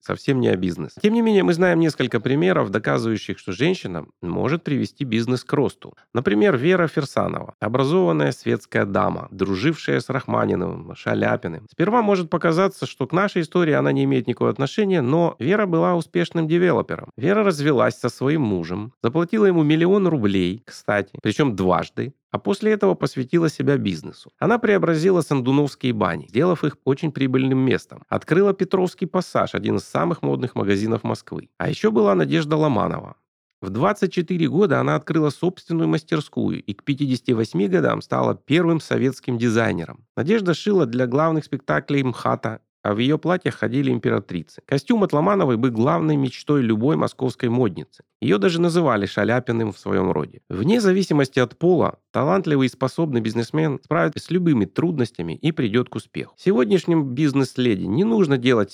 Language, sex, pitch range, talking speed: Russian, male, 120-175 Hz, 155 wpm